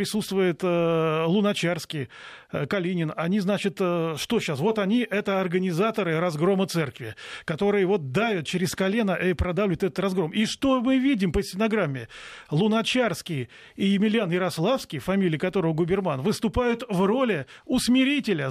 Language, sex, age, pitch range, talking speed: Russian, male, 30-49, 180-230 Hz, 135 wpm